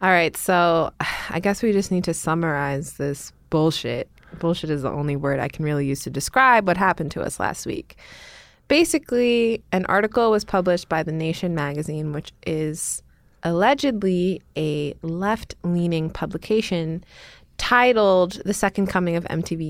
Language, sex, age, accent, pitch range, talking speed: English, female, 20-39, American, 155-195 Hz, 150 wpm